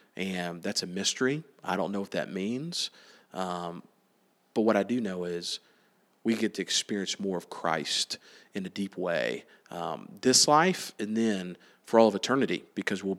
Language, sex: English, male